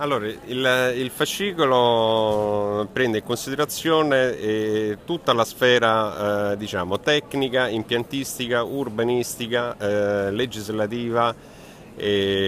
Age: 30-49